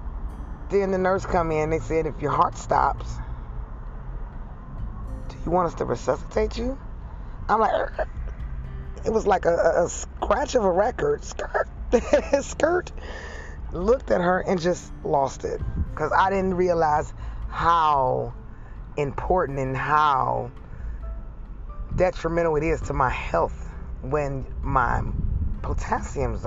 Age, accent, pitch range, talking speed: 20-39, American, 120-185 Hz, 125 wpm